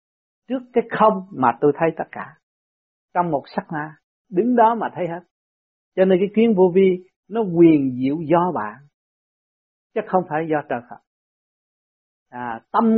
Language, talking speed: Vietnamese, 165 wpm